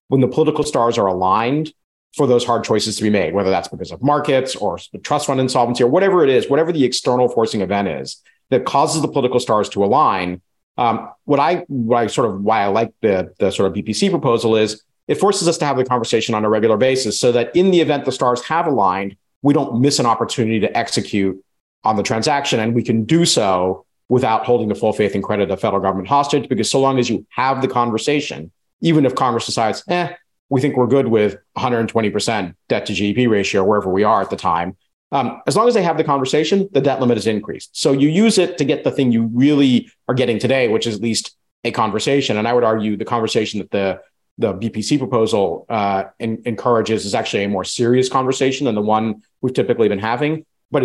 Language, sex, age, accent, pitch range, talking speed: English, male, 50-69, American, 110-145 Hz, 225 wpm